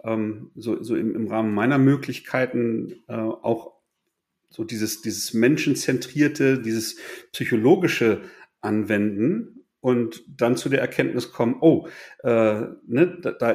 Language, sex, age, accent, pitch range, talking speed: German, male, 40-59, German, 110-145 Hz, 120 wpm